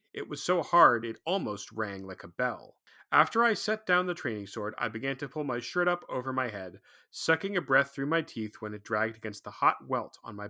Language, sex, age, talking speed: English, male, 30-49, 240 wpm